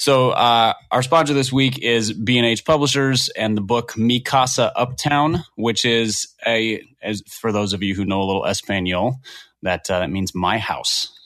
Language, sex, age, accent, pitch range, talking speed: English, male, 30-49, American, 100-125 Hz, 180 wpm